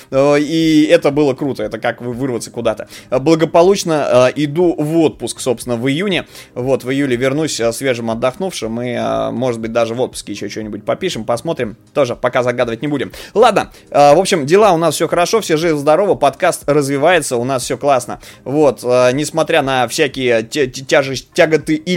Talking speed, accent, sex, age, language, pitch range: 180 wpm, native, male, 20-39, Russian, 125-155 Hz